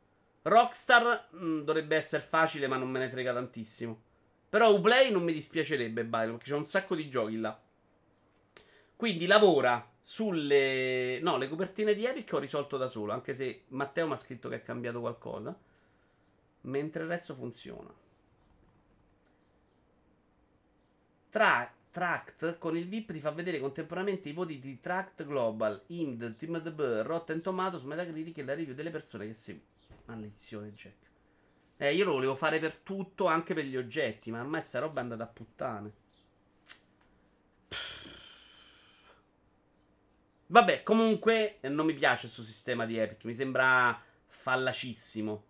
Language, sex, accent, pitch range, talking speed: Italian, male, native, 115-165 Hz, 150 wpm